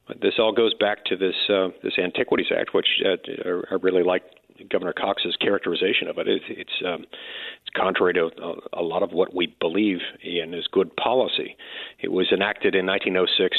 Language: English